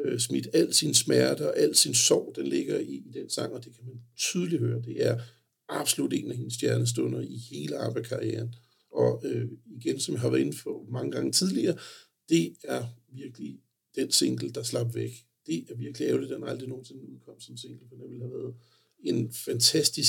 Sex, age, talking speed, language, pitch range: male, 60-79, 205 wpm, Danish, 110-120 Hz